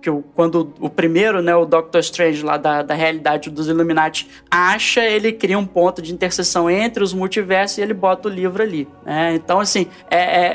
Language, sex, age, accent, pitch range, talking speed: Portuguese, male, 20-39, Brazilian, 175-230 Hz, 195 wpm